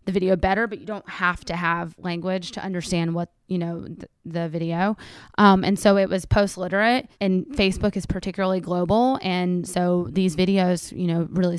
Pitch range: 175-200 Hz